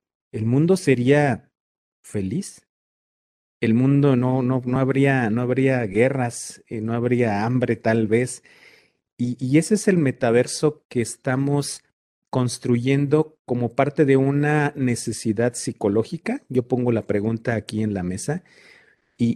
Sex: male